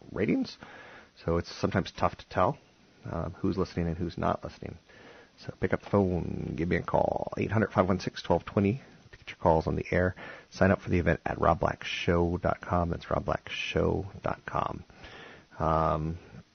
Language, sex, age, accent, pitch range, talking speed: English, male, 30-49, American, 85-105 Hz, 145 wpm